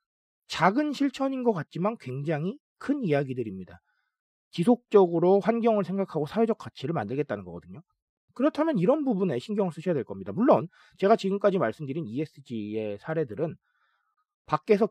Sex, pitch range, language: male, 150-230 Hz, Korean